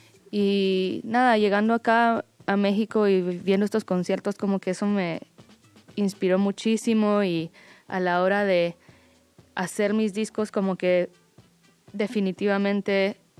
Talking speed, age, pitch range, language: 120 wpm, 20-39, 180-205 Hz, Spanish